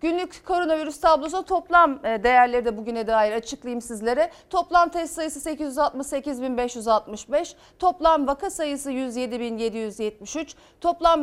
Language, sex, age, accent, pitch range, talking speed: Turkish, female, 40-59, native, 250-330 Hz, 100 wpm